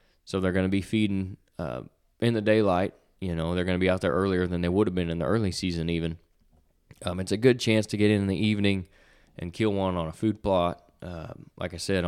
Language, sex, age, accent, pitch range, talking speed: English, male, 20-39, American, 85-100 Hz, 255 wpm